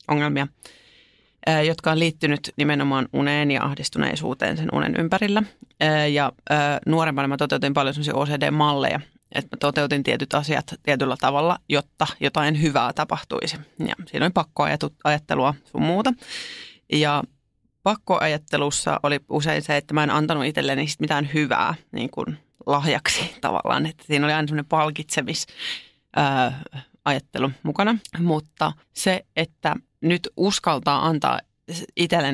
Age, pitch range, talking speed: 30-49, 145-165 Hz, 120 wpm